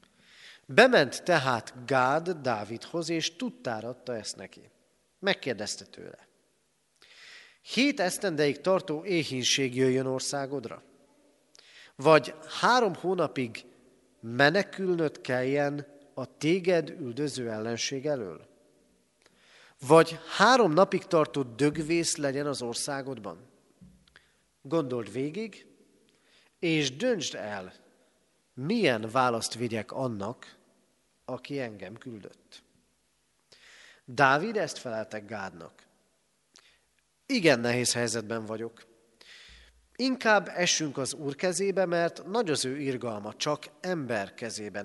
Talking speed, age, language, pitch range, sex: 90 wpm, 40-59, Hungarian, 120-175 Hz, male